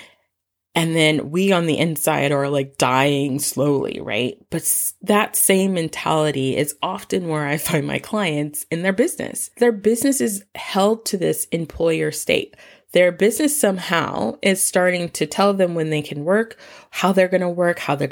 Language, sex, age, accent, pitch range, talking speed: English, female, 20-39, American, 155-220 Hz, 170 wpm